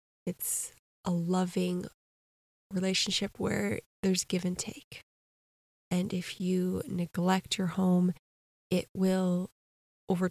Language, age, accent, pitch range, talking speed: English, 20-39, American, 180-205 Hz, 105 wpm